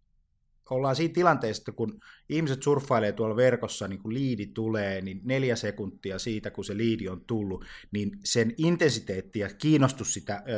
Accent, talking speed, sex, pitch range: native, 160 wpm, male, 105-140 Hz